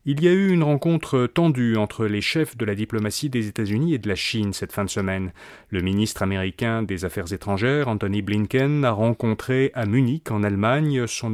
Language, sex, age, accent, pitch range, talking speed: French, male, 30-49, French, 110-155 Hz, 205 wpm